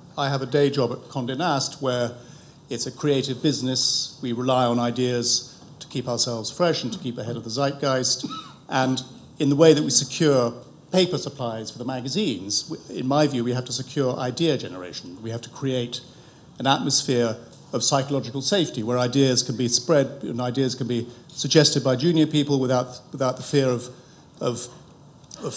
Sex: male